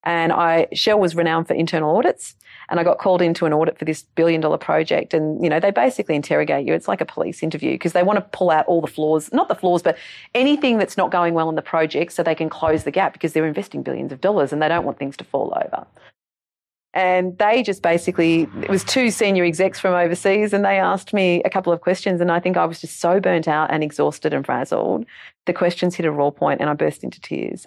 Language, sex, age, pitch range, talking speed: English, female, 40-59, 155-190 Hz, 250 wpm